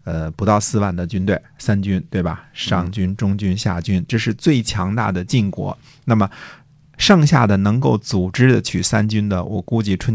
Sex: male